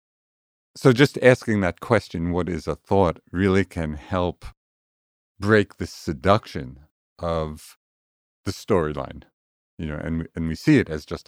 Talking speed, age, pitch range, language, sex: 145 wpm, 50-69, 75-90 Hz, English, male